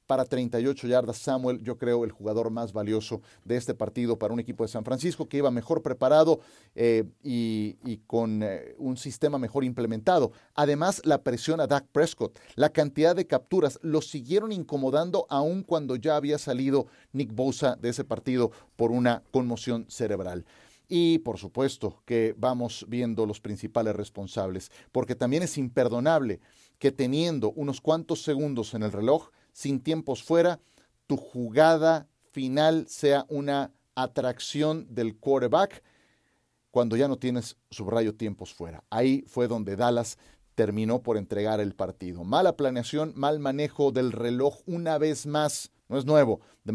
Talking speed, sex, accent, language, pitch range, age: 155 wpm, male, Mexican, Spanish, 115-150 Hz, 40-59